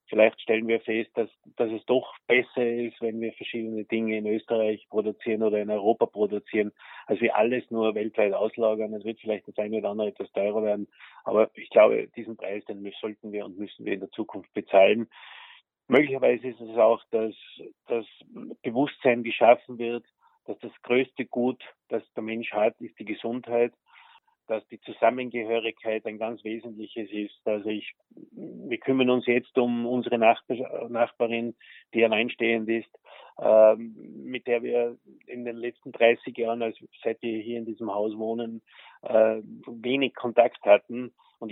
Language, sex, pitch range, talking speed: German, male, 110-120 Hz, 165 wpm